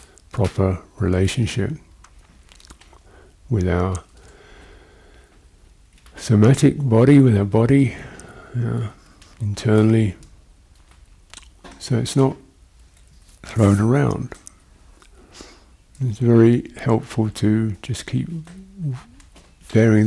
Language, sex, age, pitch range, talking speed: English, male, 50-69, 85-120 Hz, 70 wpm